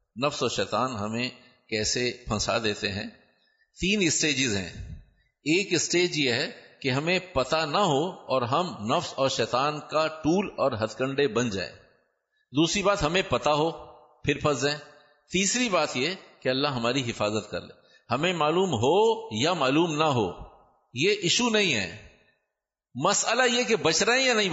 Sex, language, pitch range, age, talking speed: male, Urdu, 120-175 Hz, 50-69, 165 wpm